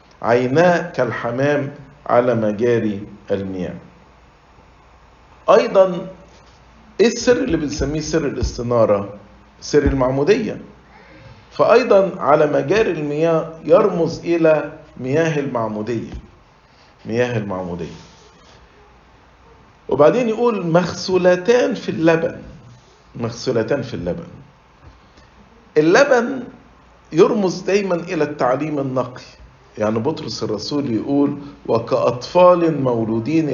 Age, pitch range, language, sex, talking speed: 50-69, 120-170 Hz, English, male, 75 wpm